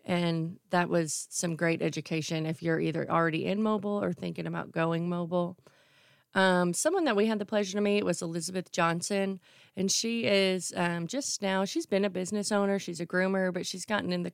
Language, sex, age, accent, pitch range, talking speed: English, female, 30-49, American, 165-190 Hz, 200 wpm